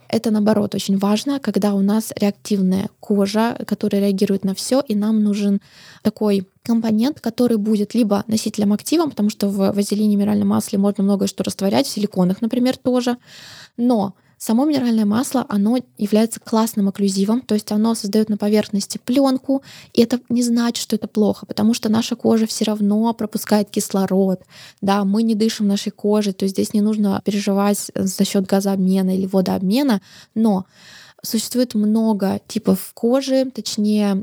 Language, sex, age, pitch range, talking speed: Russian, female, 20-39, 200-225 Hz, 155 wpm